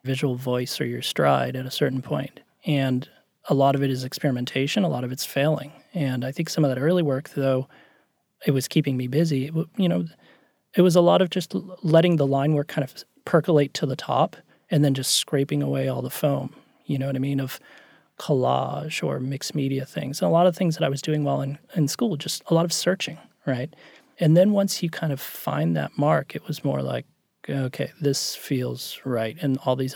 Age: 30-49